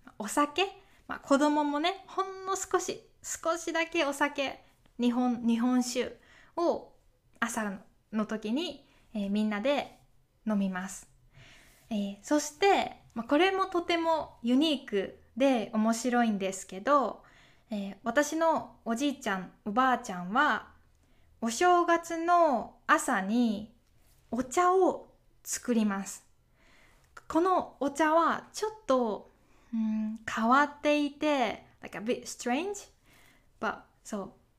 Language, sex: Japanese, female